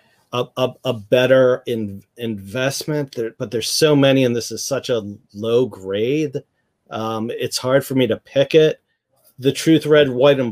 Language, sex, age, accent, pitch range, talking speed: English, male, 40-59, American, 115-130 Hz, 175 wpm